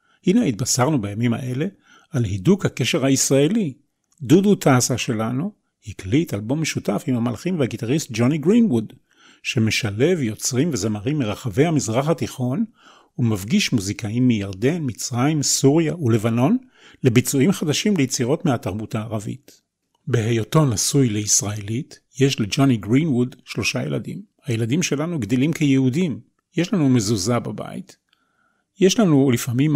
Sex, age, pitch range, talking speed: male, 40-59, 120-160 Hz, 110 wpm